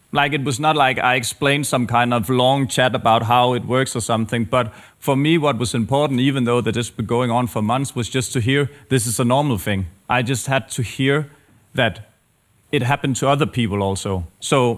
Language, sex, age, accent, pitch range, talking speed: Danish, male, 30-49, native, 115-135 Hz, 225 wpm